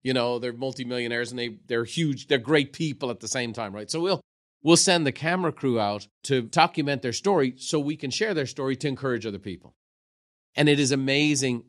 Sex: male